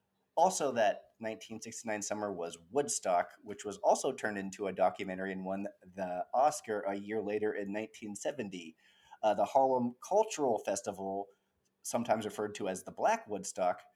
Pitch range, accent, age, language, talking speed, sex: 105-135 Hz, American, 30-49, English, 145 wpm, male